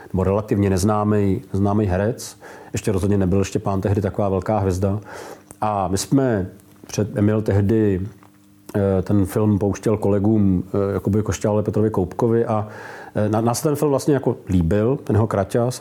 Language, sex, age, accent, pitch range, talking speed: Czech, male, 40-59, native, 100-120 Hz, 135 wpm